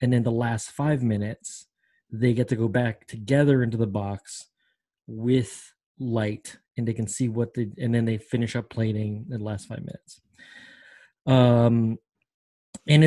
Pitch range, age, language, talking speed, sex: 115-135 Hz, 20-39, English, 165 wpm, male